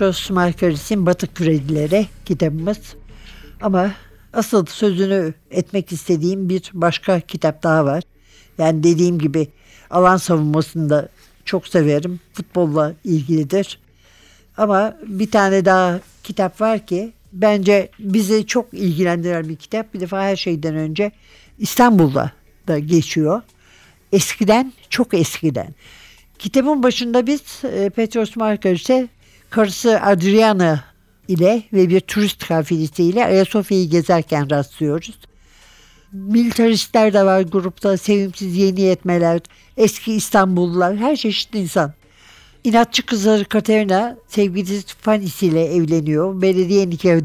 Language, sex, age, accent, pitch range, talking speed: Turkish, male, 60-79, native, 165-210 Hz, 110 wpm